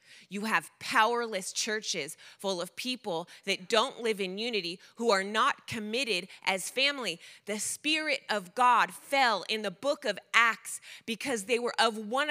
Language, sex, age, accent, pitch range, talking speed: English, female, 20-39, American, 220-290 Hz, 160 wpm